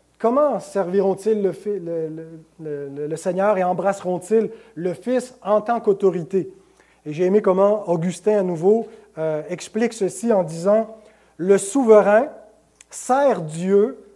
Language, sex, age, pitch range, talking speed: French, male, 30-49, 175-230 Hz, 125 wpm